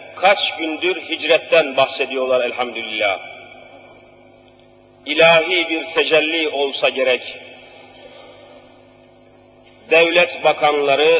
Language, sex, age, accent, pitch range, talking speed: Turkish, male, 40-59, native, 140-185 Hz, 65 wpm